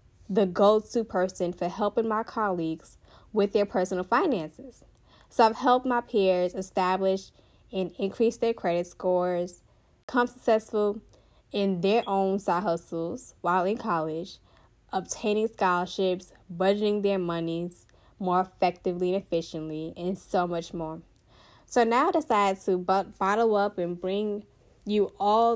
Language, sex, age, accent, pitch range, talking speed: English, female, 10-29, American, 180-220 Hz, 130 wpm